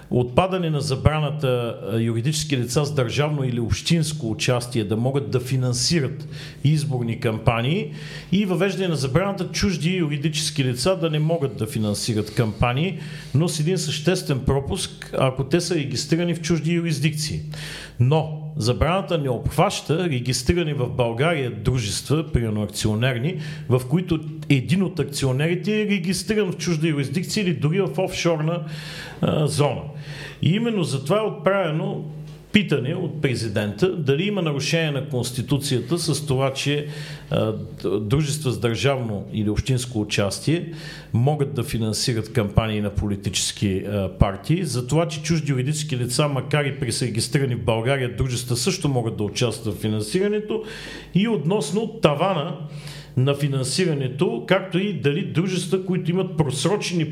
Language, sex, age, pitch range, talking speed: Bulgarian, male, 40-59, 125-170 Hz, 130 wpm